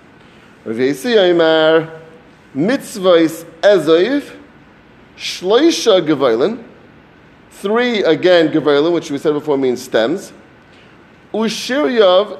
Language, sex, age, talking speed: English, male, 30-49, 70 wpm